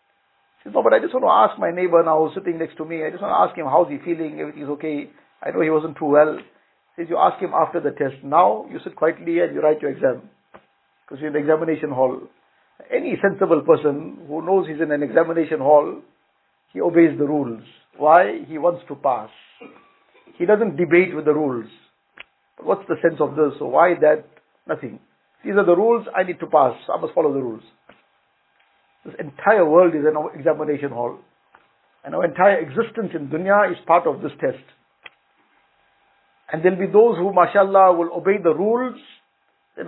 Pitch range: 155-195 Hz